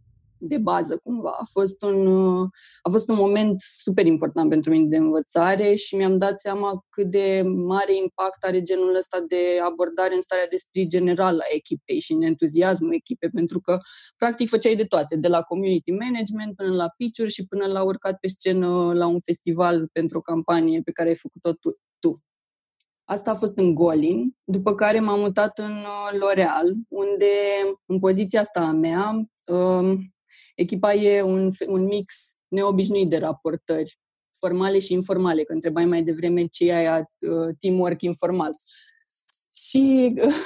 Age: 20-39